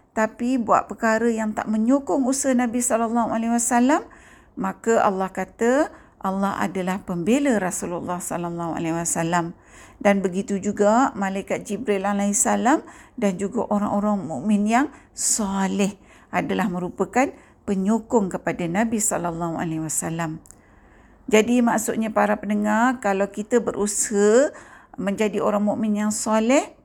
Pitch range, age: 185-230 Hz, 50-69